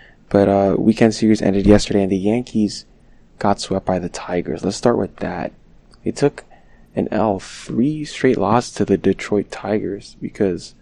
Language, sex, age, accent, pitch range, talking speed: English, male, 20-39, American, 95-105 Hz, 165 wpm